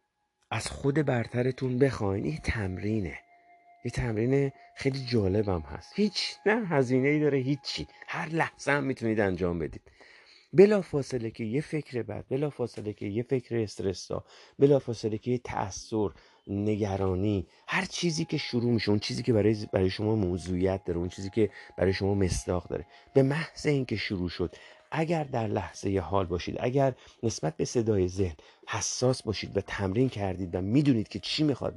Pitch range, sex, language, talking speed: 95-125 Hz, male, Persian, 160 wpm